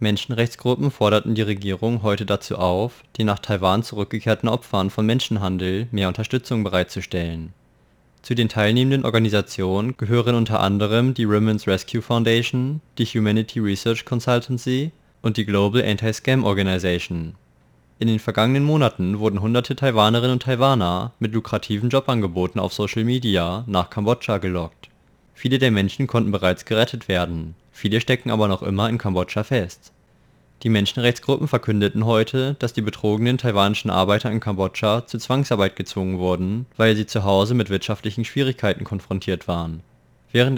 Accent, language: German, German